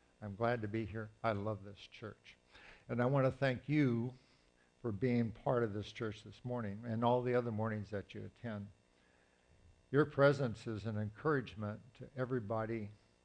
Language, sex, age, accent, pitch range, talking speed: English, male, 60-79, American, 100-125 Hz, 170 wpm